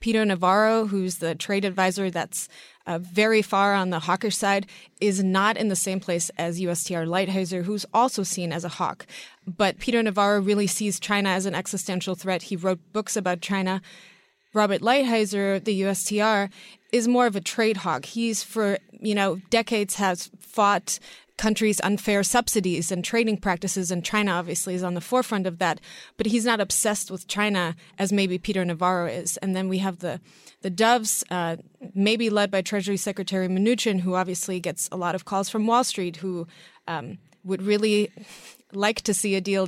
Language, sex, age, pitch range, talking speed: English, female, 20-39, 185-215 Hz, 180 wpm